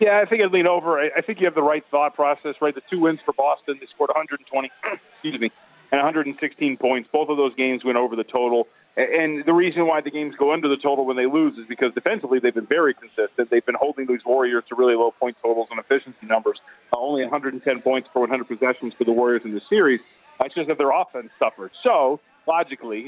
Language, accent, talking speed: English, American, 230 wpm